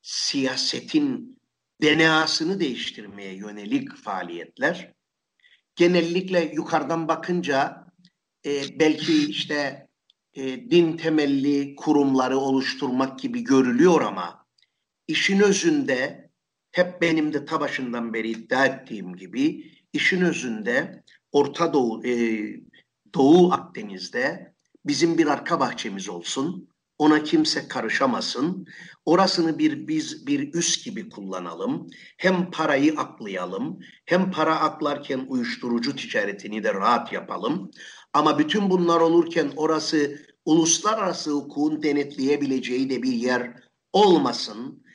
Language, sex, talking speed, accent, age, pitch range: Turkish, male, 100 wpm, native, 50-69, 130-180 Hz